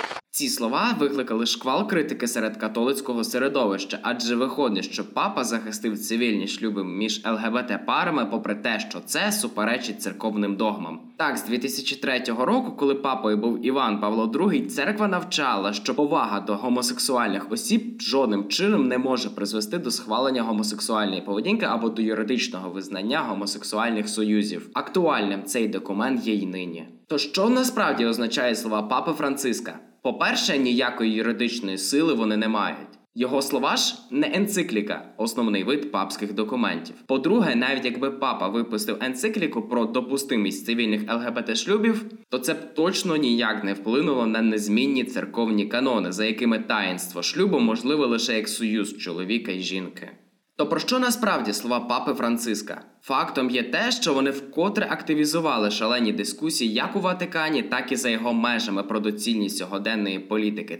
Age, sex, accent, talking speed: 20-39, male, native, 145 wpm